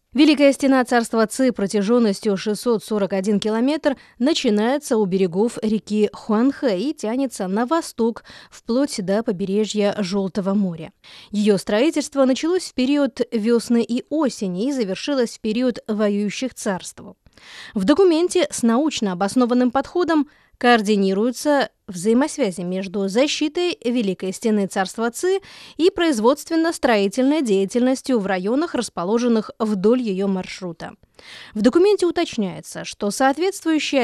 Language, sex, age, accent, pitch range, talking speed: Russian, female, 20-39, native, 210-275 Hz, 110 wpm